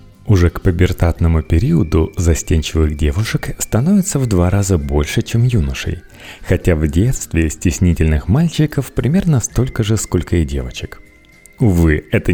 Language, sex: Russian, male